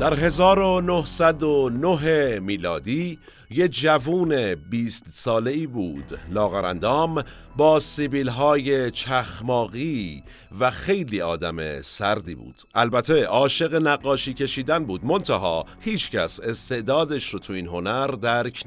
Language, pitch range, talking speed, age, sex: Persian, 100-145 Hz, 105 wpm, 50-69, male